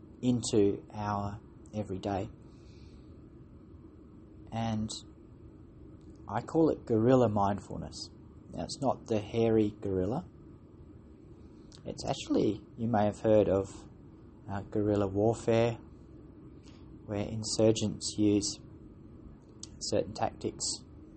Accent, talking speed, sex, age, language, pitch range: Australian, 85 wpm, male, 30-49, English, 105-115 Hz